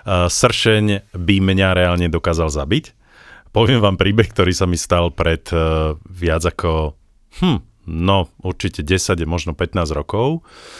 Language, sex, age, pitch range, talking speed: Slovak, male, 40-59, 85-110 Hz, 140 wpm